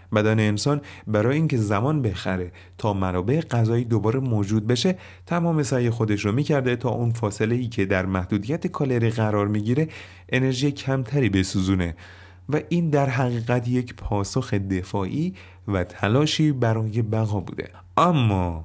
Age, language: 30-49, Persian